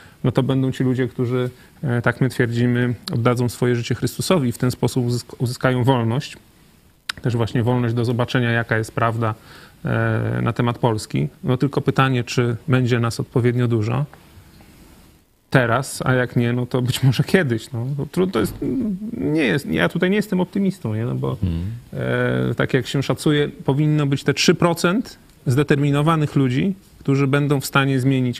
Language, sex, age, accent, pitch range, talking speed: Polish, male, 30-49, native, 120-150 Hz, 170 wpm